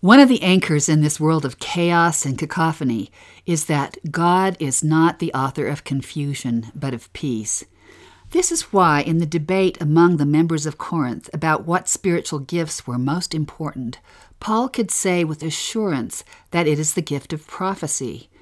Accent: American